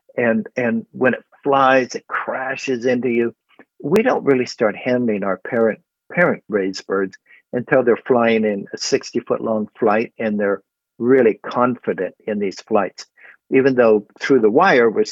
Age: 60-79